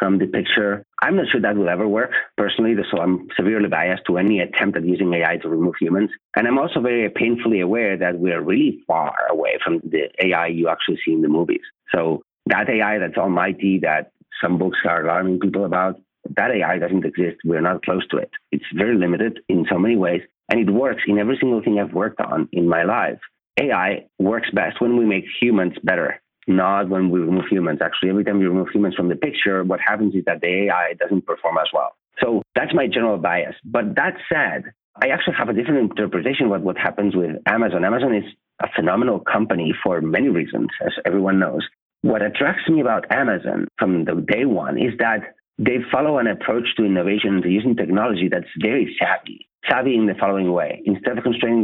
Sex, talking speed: male, 210 wpm